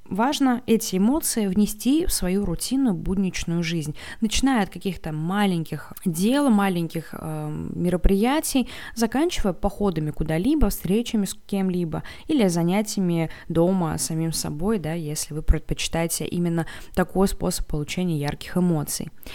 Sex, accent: female, native